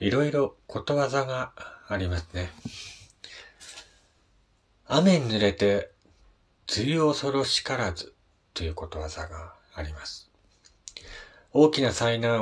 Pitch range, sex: 85-105 Hz, male